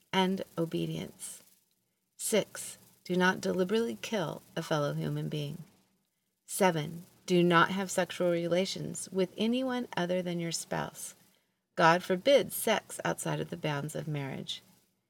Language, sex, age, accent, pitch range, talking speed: English, female, 40-59, American, 165-205 Hz, 125 wpm